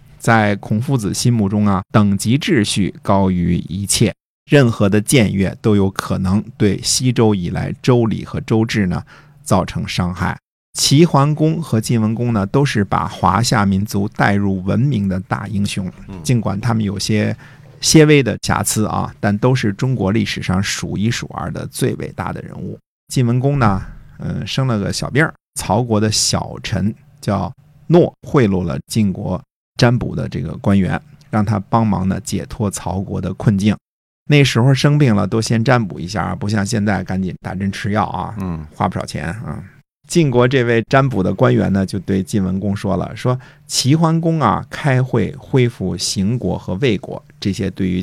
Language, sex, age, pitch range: Chinese, male, 50-69, 100-130 Hz